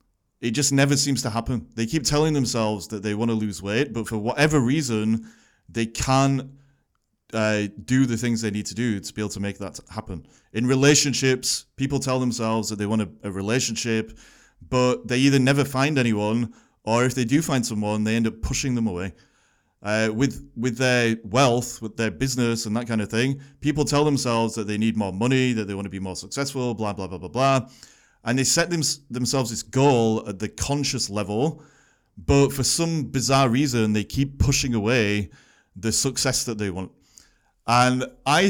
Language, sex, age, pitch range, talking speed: English, male, 20-39, 110-135 Hz, 195 wpm